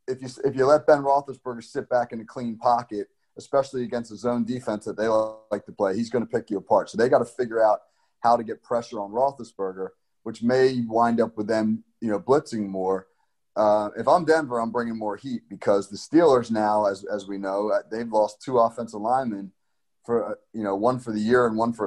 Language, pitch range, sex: English, 105-120 Hz, male